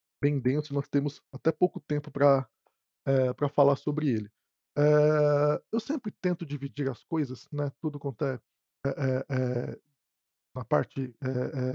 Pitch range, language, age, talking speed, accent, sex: 130-165 Hz, Portuguese, 20-39, 150 wpm, Brazilian, male